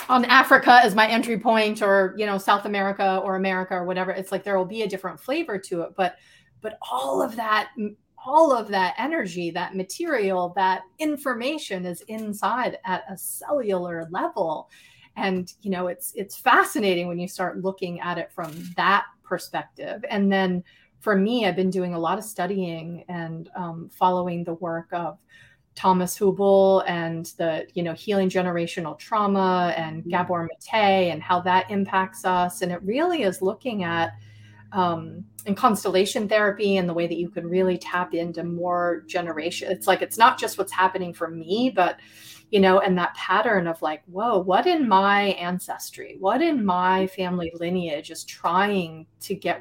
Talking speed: 175 wpm